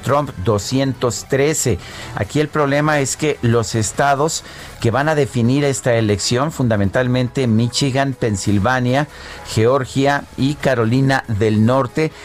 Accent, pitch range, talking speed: Mexican, 110-140 Hz, 115 wpm